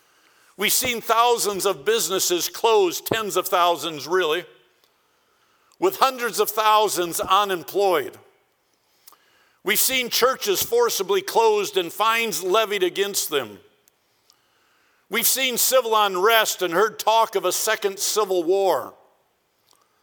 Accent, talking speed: American, 110 wpm